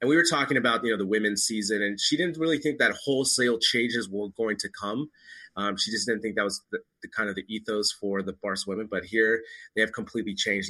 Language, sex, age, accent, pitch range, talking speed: English, male, 30-49, American, 105-125 Hz, 250 wpm